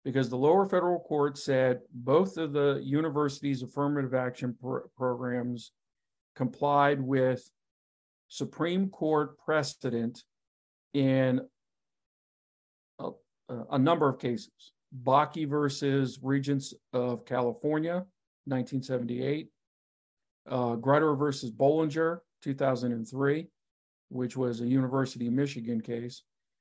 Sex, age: male, 50-69